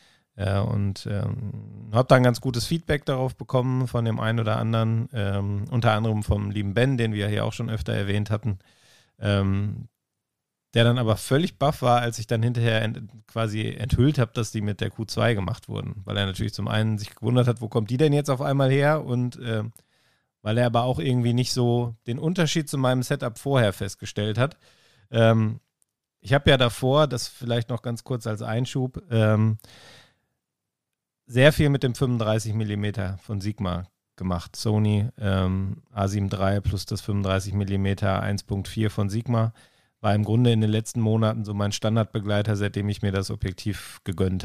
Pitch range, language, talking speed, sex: 105-125 Hz, German, 175 wpm, male